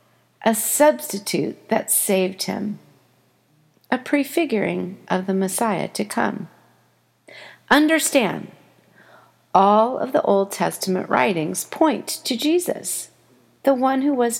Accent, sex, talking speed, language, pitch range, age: American, female, 110 wpm, English, 195-255 Hz, 50-69